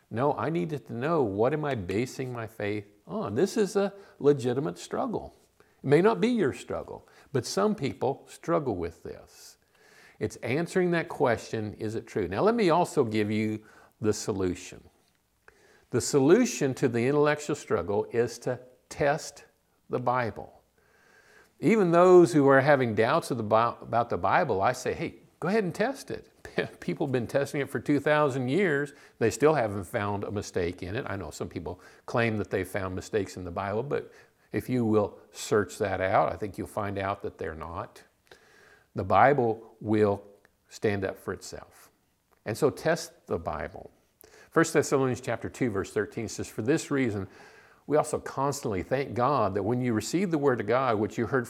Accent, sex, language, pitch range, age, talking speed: American, male, English, 105-150 Hz, 50-69, 180 wpm